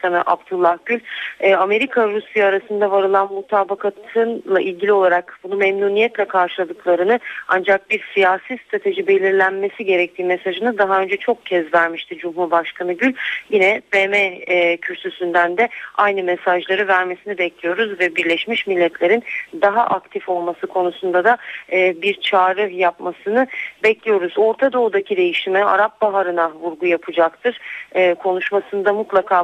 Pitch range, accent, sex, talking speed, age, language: 180-215 Hz, native, female, 110 wpm, 40-59, Turkish